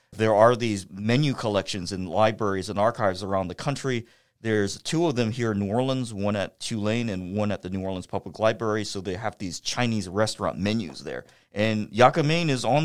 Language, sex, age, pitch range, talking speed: English, male, 40-59, 105-125 Hz, 200 wpm